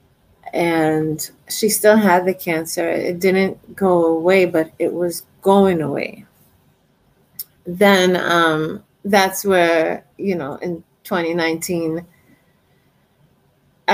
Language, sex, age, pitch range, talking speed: English, female, 30-49, 160-200 Hz, 100 wpm